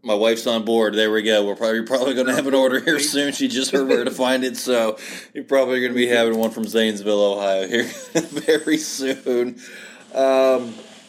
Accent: American